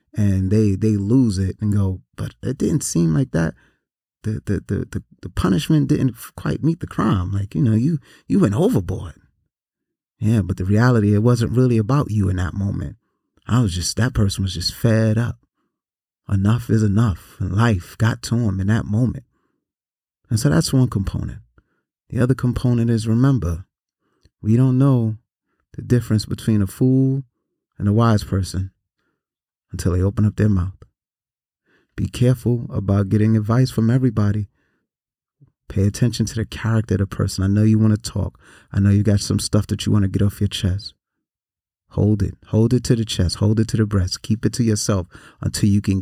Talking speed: 190 wpm